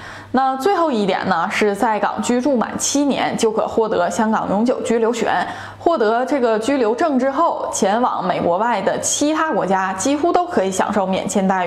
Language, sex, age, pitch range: Chinese, female, 10-29, 210-280 Hz